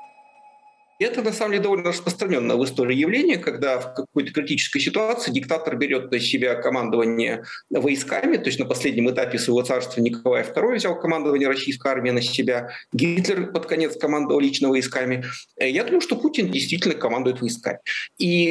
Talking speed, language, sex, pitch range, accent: 155 wpm, Russian, male, 130-185 Hz, native